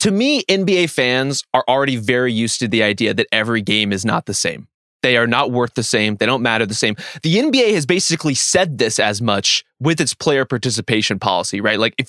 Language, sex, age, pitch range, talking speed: English, male, 20-39, 115-145 Hz, 225 wpm